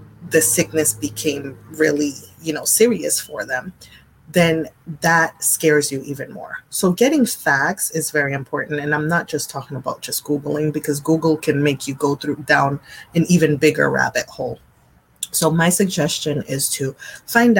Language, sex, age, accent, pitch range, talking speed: English, female, 30-49, American, 135-160 Hz, 165 wpm